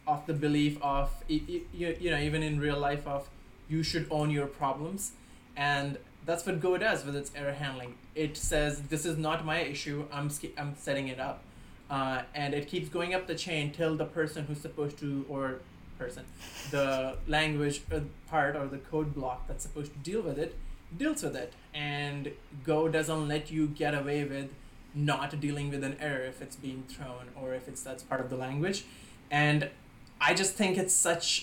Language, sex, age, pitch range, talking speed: English, male, 20-39, 140-160 Hz, 195 wpm